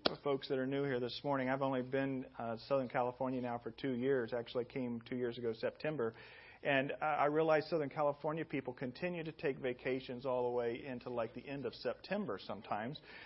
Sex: male